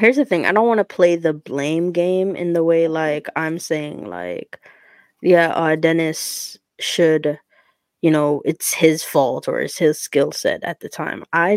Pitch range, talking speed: 155-200 Hz, 185 wpm